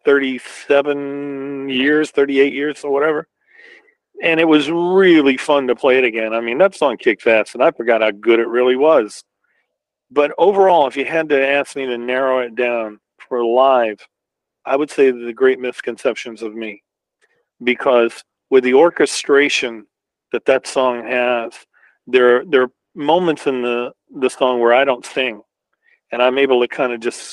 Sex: male